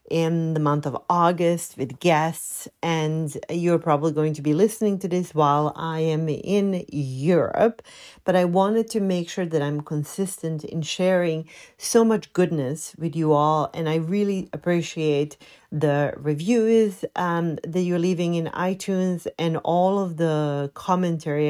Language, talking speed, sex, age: English, 155 wpm, female, 40-59